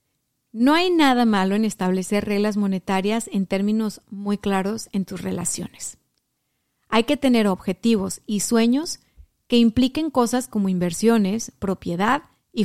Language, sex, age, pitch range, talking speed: Spanish, female, 30-49, 195-245 Hz, 135 wpm